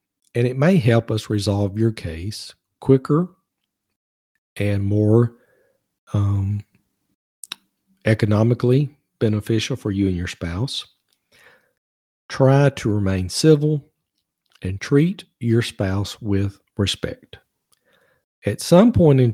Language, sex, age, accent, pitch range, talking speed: English, male, 50-69, American, 100-125 Hz, 100 wpm